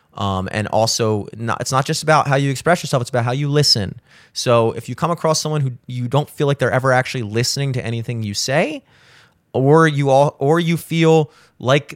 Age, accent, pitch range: 30-49, American, 120-155 Hz